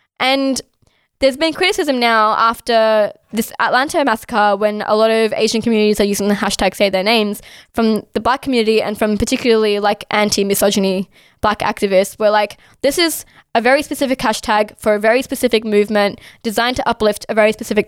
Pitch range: 210-260 Hz